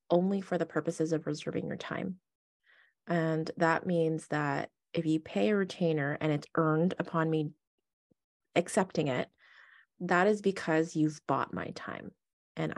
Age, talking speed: 20-39, 150 wpm